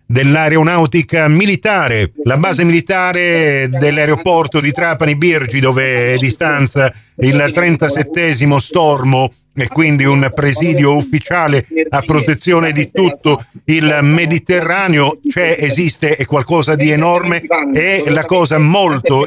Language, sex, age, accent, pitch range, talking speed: Italian, male, 50-69, native, 135-160 Hz, 105 wpm